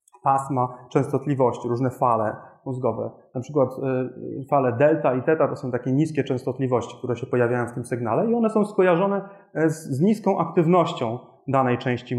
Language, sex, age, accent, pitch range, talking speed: Polish, male, 30-49, native, 135-180 Hz, 160 wpm